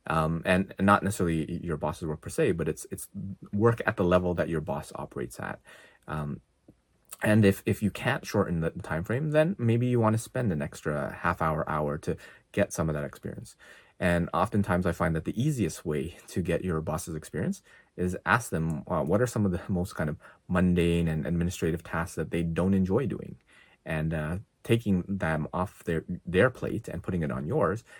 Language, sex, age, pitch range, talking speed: English, male, 30-49, 80-100 Hz, 200 wpm